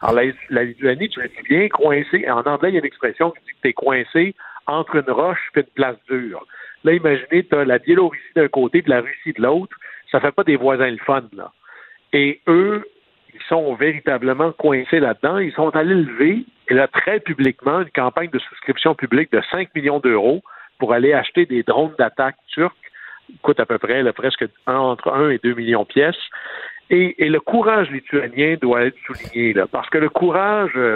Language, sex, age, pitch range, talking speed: French, male, 60-79, 125-175 Hz, 205 wpm